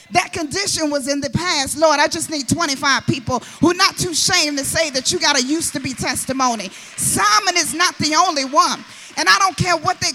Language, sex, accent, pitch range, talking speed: English, female, American, 280-360 Hz, 220 wpm